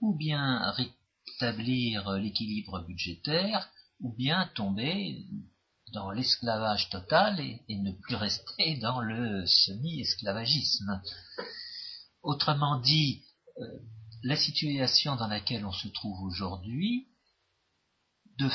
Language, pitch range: French, 100-135 Hz